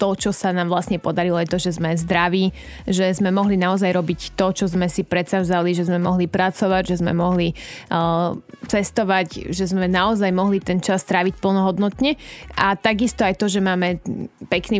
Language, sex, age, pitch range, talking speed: Slovak, female, 20-39, 175-195 Hz, 185 wpm